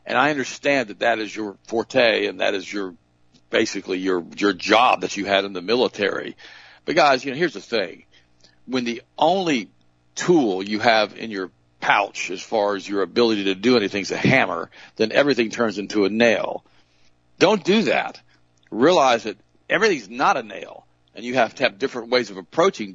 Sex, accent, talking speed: male, American, 195 wpm